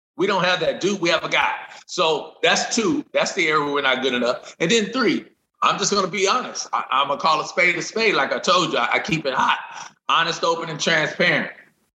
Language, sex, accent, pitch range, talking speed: English, male, American, 155-190 Hz, 245 wpm